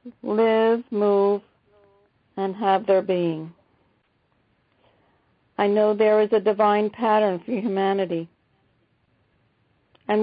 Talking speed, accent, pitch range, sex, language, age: 95 wpm, American, 185-225 Hz, female, English, 50-69